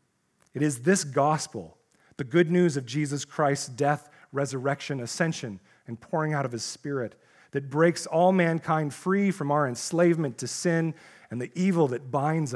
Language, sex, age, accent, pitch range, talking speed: English, male, 40-59, American, 115-150 Hz, 160 wpm